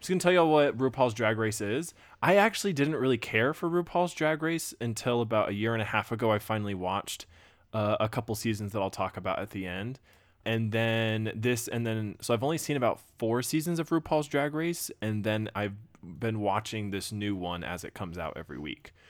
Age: 20-39